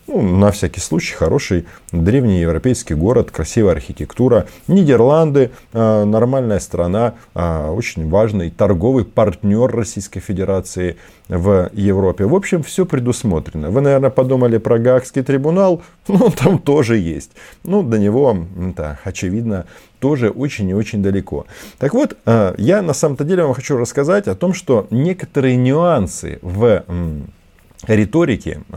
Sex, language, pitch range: male, Russian, 95-140 Hz